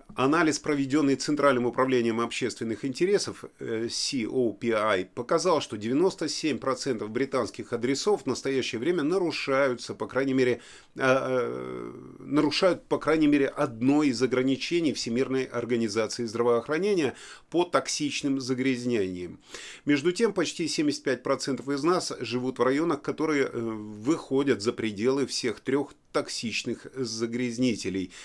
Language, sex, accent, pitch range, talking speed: Russian, male, native, 120-145 Hz, 100 wpm